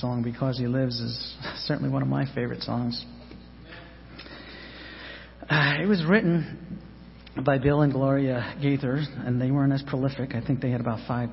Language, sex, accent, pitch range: English, male, American, 110-145 Hz